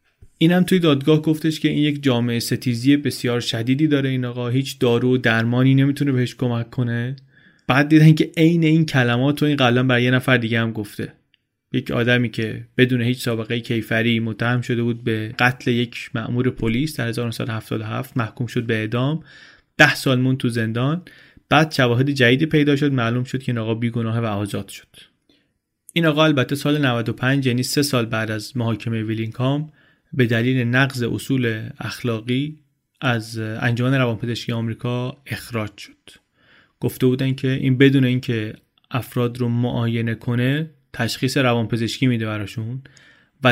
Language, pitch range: Persian, 115-135 Hz